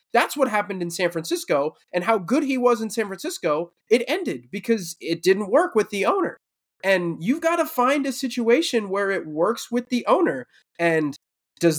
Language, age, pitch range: English, 20-39, 160-235 Hz